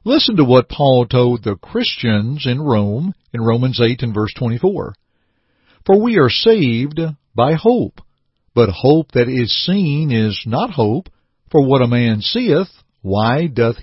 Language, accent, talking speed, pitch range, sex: English, American, 155 wpm, 115-165 Hz, male